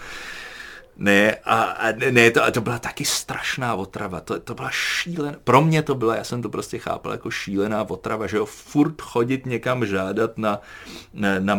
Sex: male